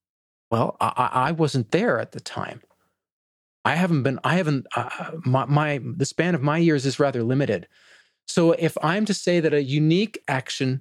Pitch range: 115-160 Hz